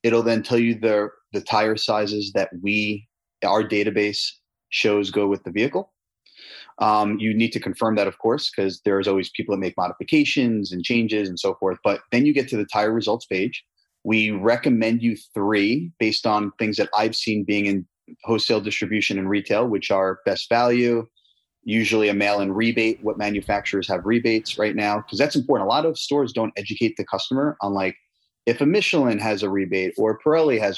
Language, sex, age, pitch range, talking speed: English, male, 30-49, 100-115 Hz, 190 wpm